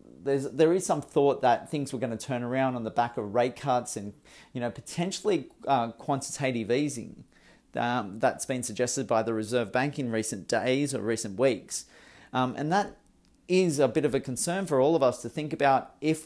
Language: English